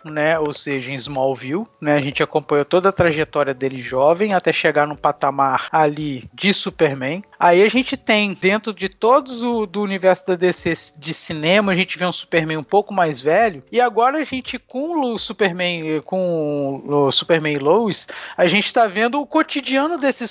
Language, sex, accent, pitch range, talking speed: Portuguese, male, Brazilian, 170-230 Hz, 185 wpm